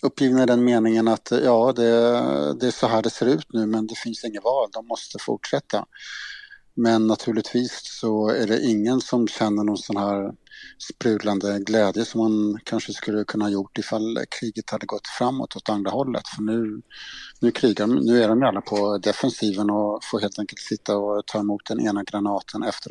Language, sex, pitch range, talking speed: Swedish, male, 105-115 Hz, 195 wpm